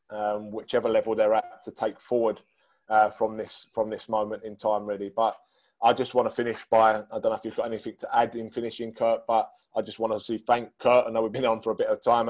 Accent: British